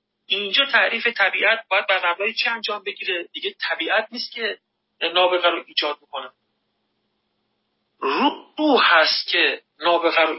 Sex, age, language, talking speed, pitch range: male, 40-59, Persian, 125 wpm, 165-230 Hz